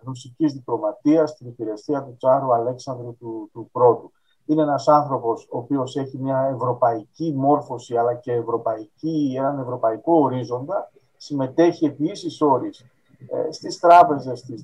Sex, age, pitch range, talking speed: male, 50-69, 130-175 Hz, 130 wpm